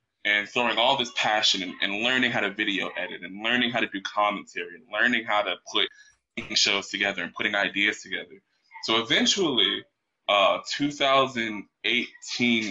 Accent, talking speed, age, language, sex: American, 150 wpm, 20-39, English, male